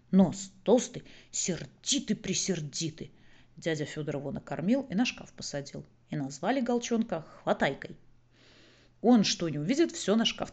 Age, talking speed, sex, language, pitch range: 30-49, 125 wpm, female, Russian, 155-215 Hz